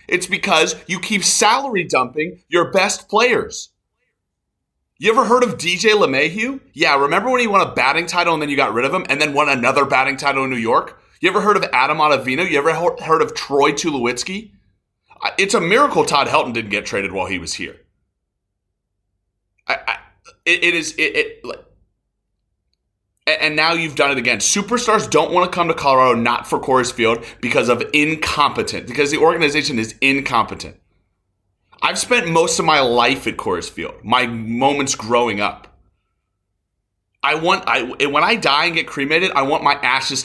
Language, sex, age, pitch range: English, male, 30-49, 105-170 Hz